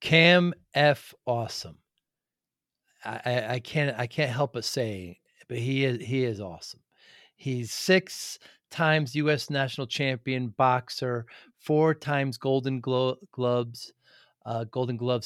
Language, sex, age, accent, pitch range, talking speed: English, male, 40-59, American, 120-150 Hz, 130 wpm